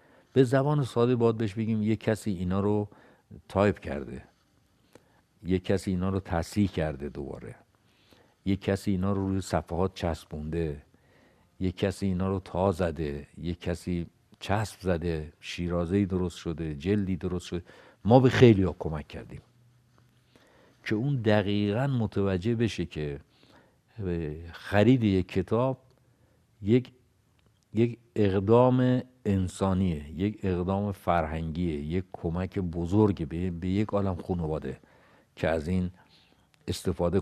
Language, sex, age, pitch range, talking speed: Persian, male, 60-79, 85-105 Hz, 120 wpm